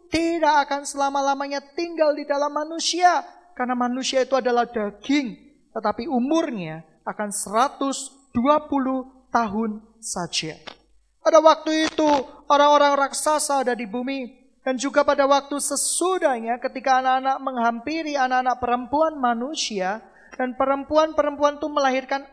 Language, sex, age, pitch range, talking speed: Indonesian, male, 30-49, 240-290 Hz, 110 wpm